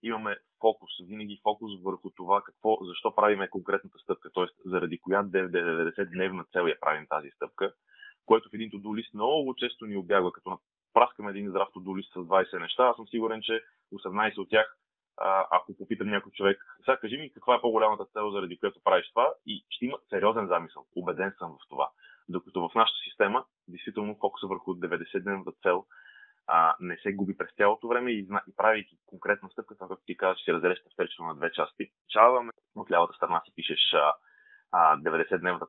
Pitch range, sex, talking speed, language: 100-140 Hz, male, 175 wpm, Bulgarian